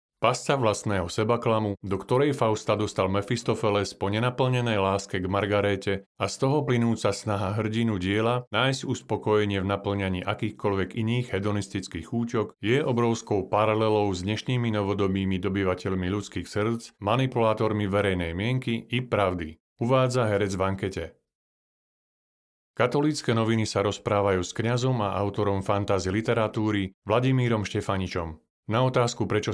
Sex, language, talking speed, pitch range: male, Slovak, 125 wpm, 100-115 Hz